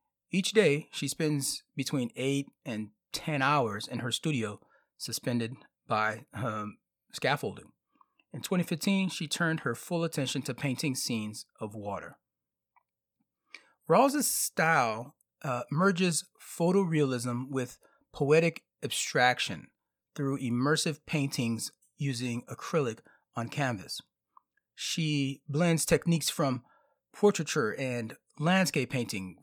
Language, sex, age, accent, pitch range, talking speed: English, male, 40-59, American, 125-165 Hz, 105 wpm